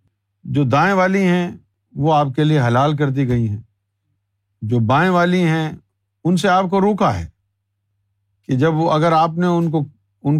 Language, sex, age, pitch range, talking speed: Urdu, male, 50-69, 105-170 Hz, 185 wpm